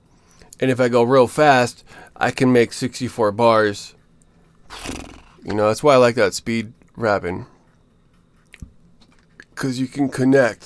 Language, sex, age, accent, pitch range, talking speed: English, male, 20-39, American, 100-125 Hz, 135 wpm